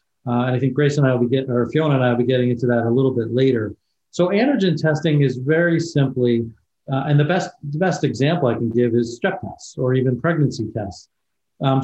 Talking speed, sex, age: 240 wpm, male, 40-59